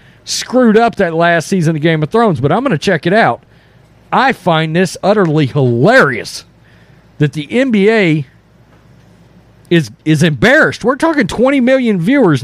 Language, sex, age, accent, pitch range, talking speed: English, male, 40-59, American, 140-215 Hz, 150 wpm